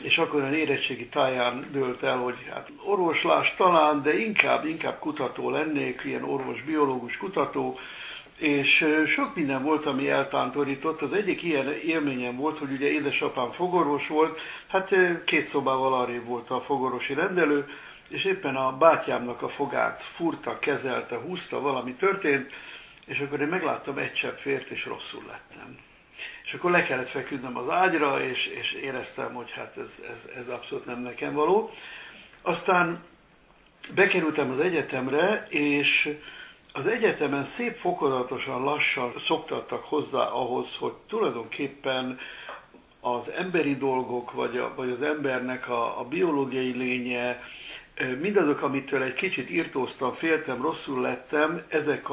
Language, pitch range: Hungarian, 130-160 Hz